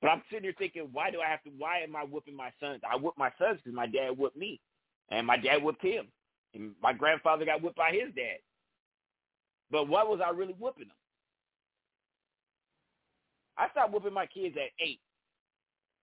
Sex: male